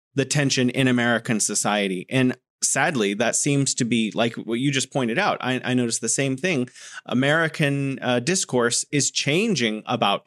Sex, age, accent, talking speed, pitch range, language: male, 30-49, American, 170 wpm, 120-160 Hz, English